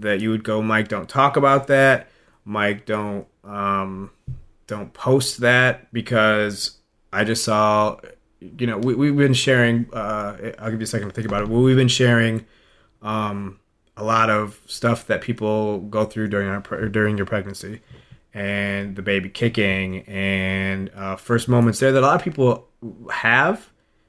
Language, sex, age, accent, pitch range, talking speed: English, male, 30-49, American, 100-120 Hz, 170 wpm